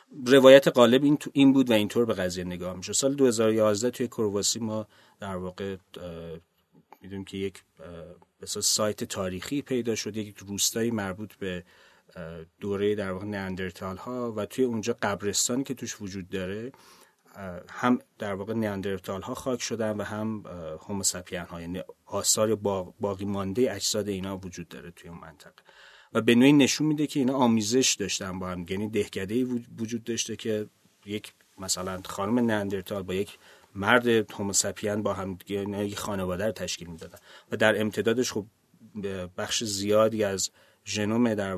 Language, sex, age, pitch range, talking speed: Persian, male, 40-59, 95-115 Hz, 150 wpm